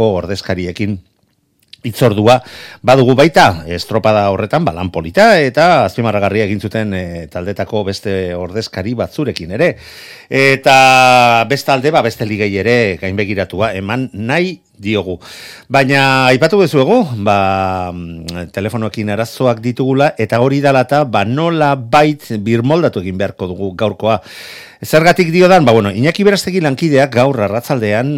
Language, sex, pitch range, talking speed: Spanish, male, 95-130 Hz, 125 wpm